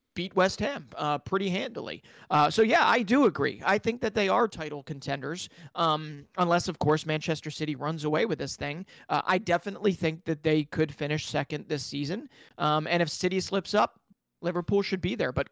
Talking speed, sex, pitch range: 200 wpm, male, 155-205 Hz